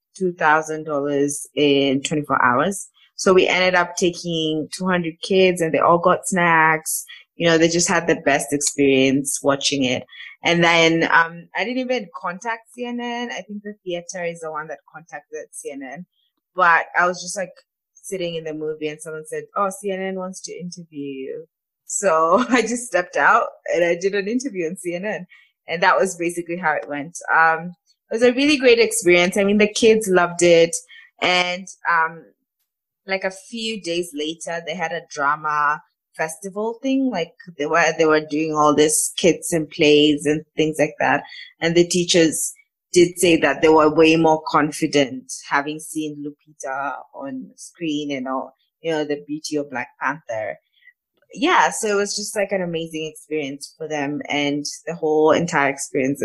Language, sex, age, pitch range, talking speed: English, female, 20-39, 155-195 Hz, 175 wpm